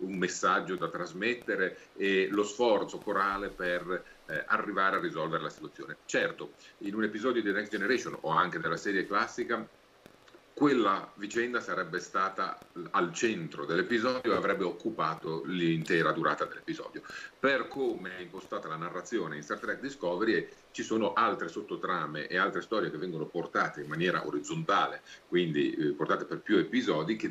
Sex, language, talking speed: male, Italian, 155 wpm